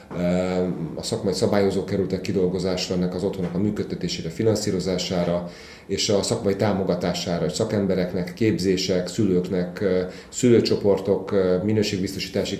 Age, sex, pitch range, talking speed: 30-49, male, 90-110 Hz, 95 wpm